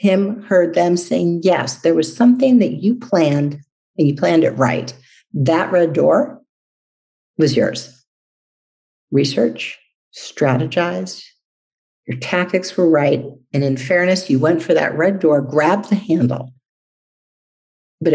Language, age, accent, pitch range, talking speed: English, 50-69, American, 140-190 Hz, 130 wpm